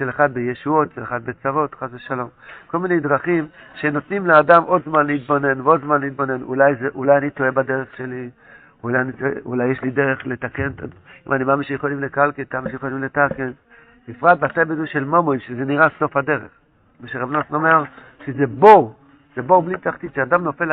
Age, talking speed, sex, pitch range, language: 60-79, 180 wpm, male, 130-160 Hz, Hebrew